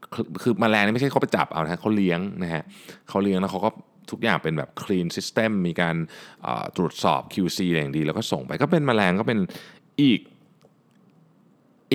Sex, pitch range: male, 80-110 Hz